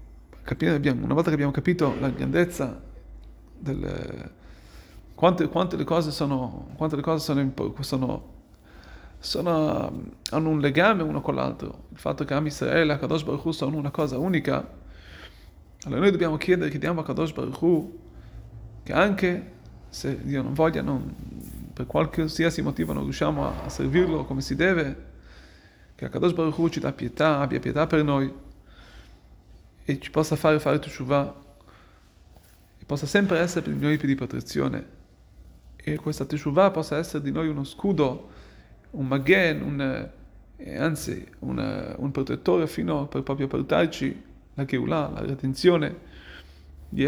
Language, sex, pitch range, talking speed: Italian, male, 105-155 Hz, 150 wpm